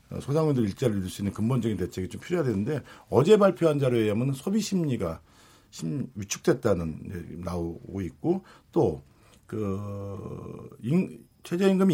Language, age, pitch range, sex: Korean, 50-69, 105-160 Hz, male